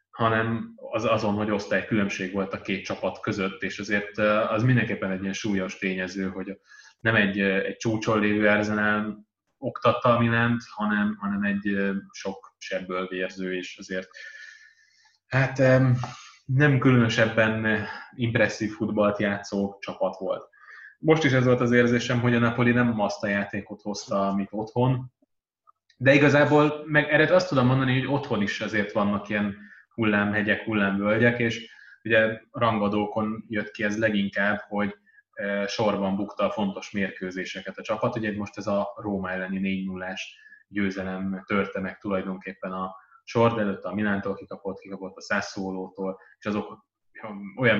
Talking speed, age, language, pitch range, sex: 140 wpm, 20-39, Hungarian, 100-120 Hz, male